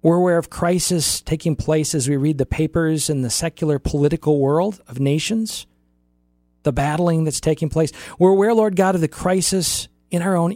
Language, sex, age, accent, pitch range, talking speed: English, male, 40-59, American, 140-175 Hz, 190 wpm